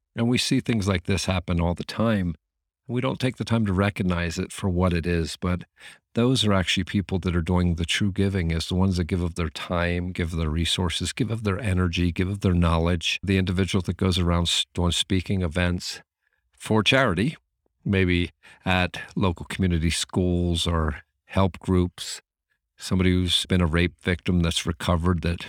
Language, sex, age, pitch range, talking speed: English, male, 50-69, 85-100 Hz, 190 wpm